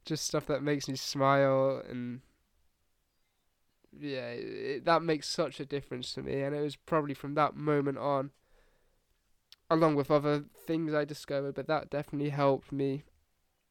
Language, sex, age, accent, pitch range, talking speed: English, male, 10-29, British, 130-150 Hz, 150 wpm